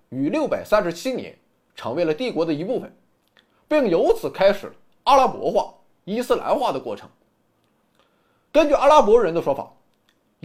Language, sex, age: Chinese, male, 20-39